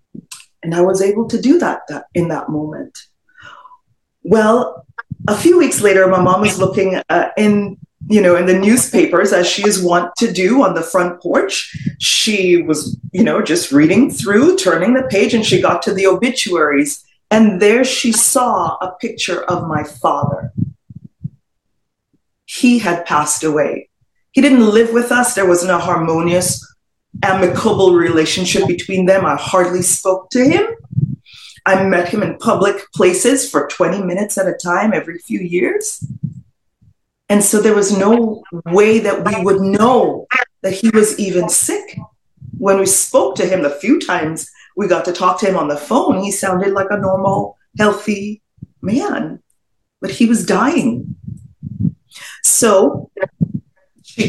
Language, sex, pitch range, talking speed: English, female, 175-220 Hz, 160 wpm